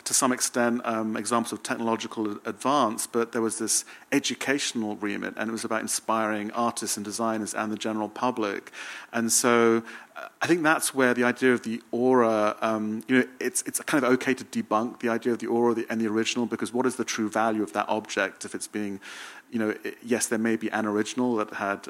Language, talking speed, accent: English, 215 wpm, British